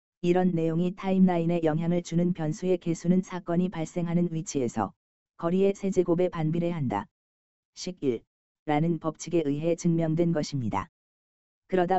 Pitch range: 145-180 Hz